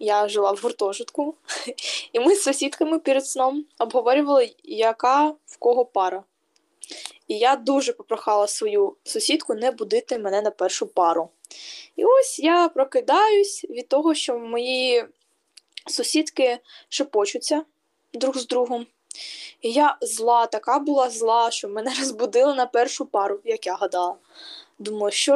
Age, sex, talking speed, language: 10-29, female, 135 wpm, Ukrainian